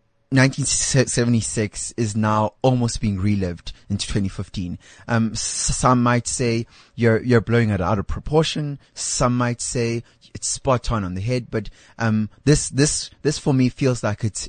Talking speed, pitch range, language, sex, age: 160 wpm, 105-125 Hz, English, male, 20-39